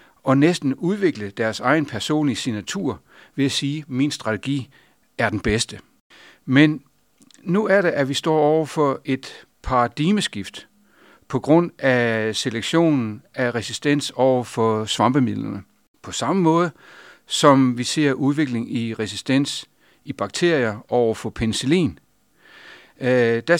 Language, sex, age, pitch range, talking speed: Danish, male, 60-79, 110-150 Hz, 130 wpm